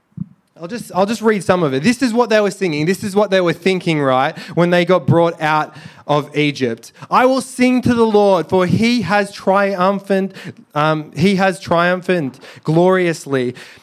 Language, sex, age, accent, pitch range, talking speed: English, male, 20-39, Australian, 165-200 Hz, 170 wpm